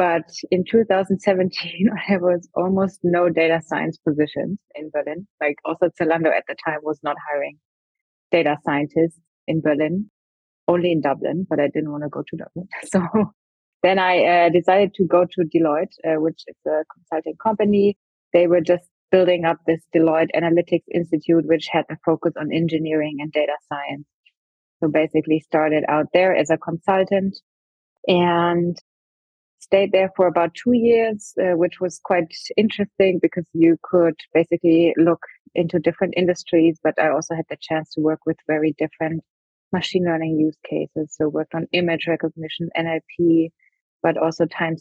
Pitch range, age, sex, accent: 155-180 Hz, 30-49, female, German